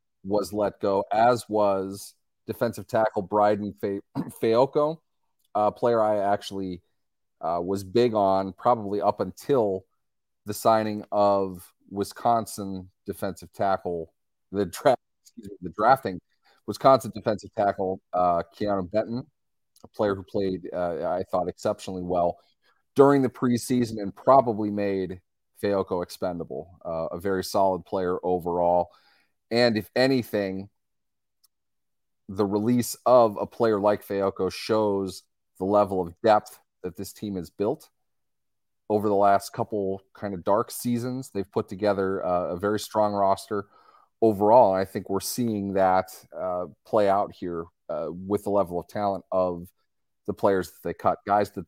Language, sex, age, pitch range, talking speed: English, male, 30-49, 95-105 Hz, 140 wpm